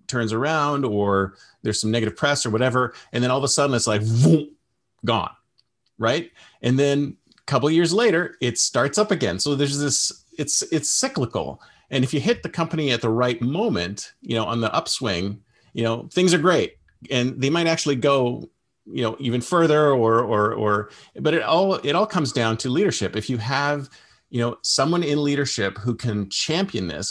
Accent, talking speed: American, 195 wpm